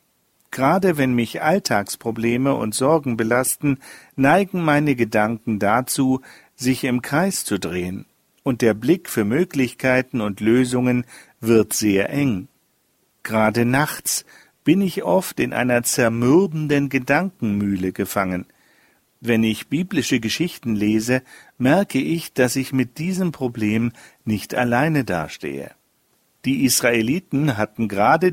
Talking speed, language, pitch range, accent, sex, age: 115 wpm, German, 110-145 Hz, German, male, 50-69